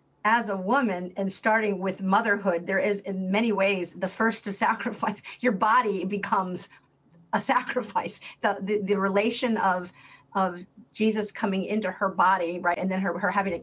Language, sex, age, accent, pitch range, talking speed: English, female, 40-59, American, 185-220 Hz, 170 wpm